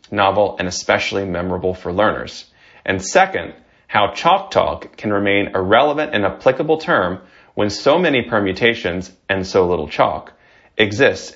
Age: 30-49